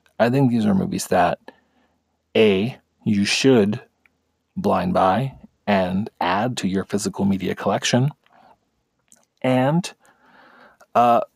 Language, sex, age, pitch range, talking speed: English, male, 40-59, 105-140 Hz, 105 wpm